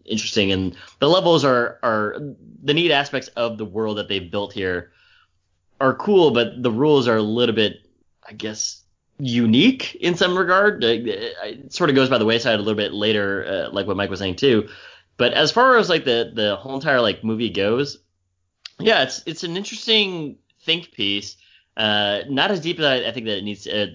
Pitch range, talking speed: 100-135 Hz, 210 wpm